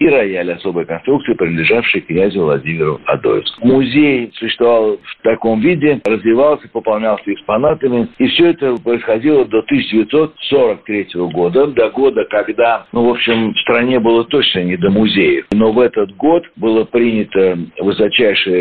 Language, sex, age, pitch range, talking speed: Russian, male, 60-79, 90-130 Hz, 140 wpm